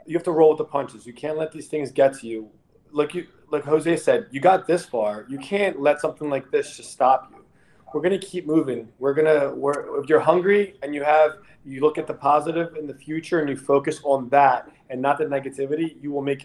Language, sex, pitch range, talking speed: English, male, 140-165 Hz, 250 wpm